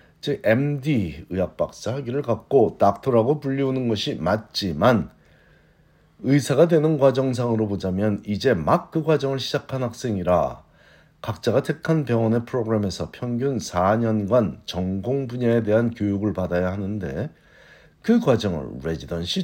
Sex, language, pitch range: male, Korean, 90-140 Hz